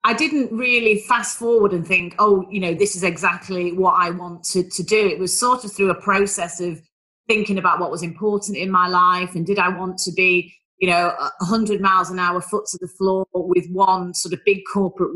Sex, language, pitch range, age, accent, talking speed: female, English, 175-220 Hz, 30-49, British, 220 wpm